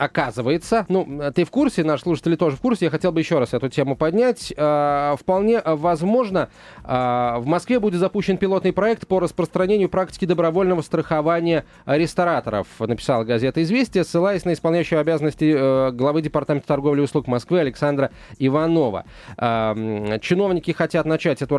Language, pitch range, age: Russian, 140-185 Hz, 20-39